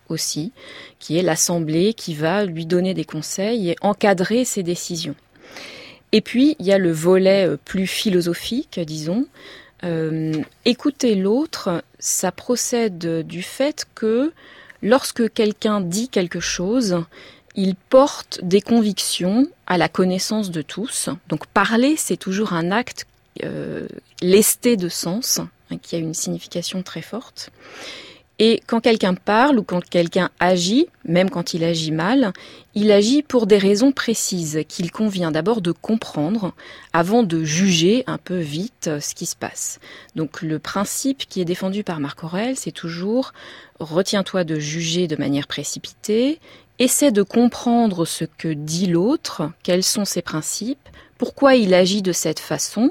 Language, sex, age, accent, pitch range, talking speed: French, female, 30-49, French, 170-230 Hz, 150 wpm